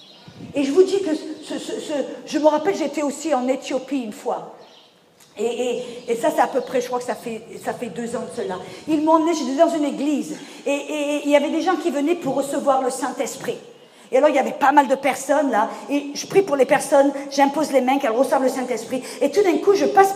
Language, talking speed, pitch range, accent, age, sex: English, 255 wpm, 240-305 Hz, French, 40-59, female